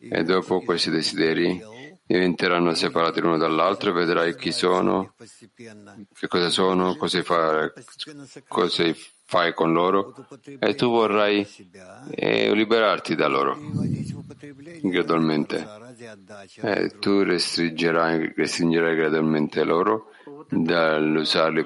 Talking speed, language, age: 90 wpm, Italian, 50-69